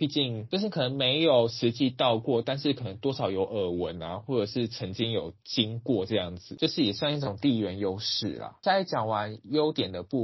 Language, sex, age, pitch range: Chinese, male, 20-39, 105-135 Hz